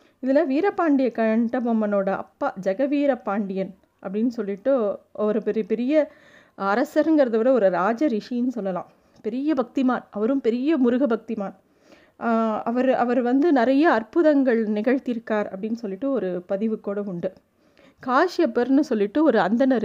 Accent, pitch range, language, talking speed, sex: native, 225-280 Hz, Tamil, 110 wpm, female